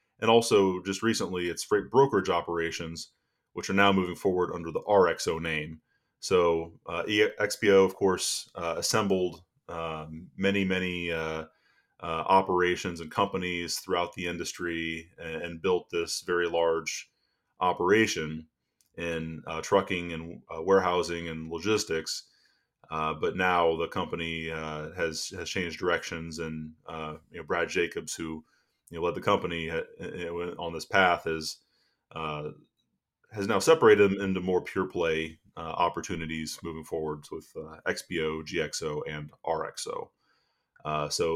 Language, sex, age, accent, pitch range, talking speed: English, male, 30-49, American, 80-95 Hz, 140 wpm